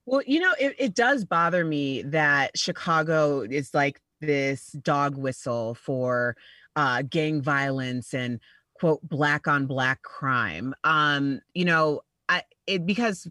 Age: 30-49